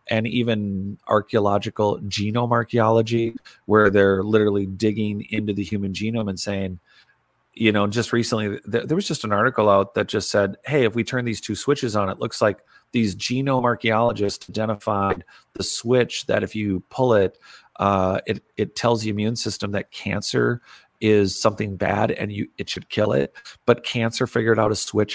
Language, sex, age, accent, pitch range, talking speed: English, male, 40-59, American, 100-115 Hz, 175 wpm